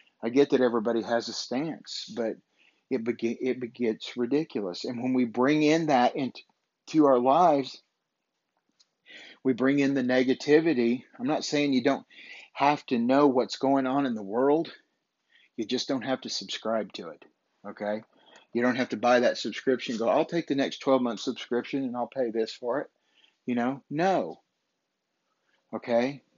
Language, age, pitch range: English, 50-69, 115-135 Hz